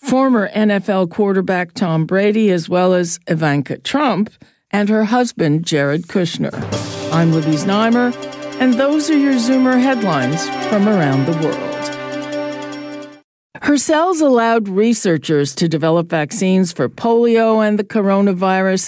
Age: 50-69